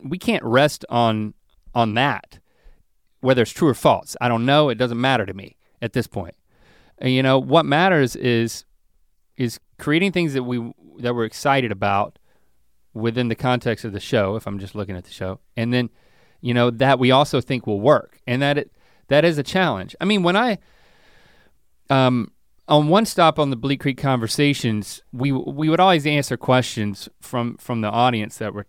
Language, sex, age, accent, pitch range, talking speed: English, male, 30-49, American, 105-135 Hz, 190 wpm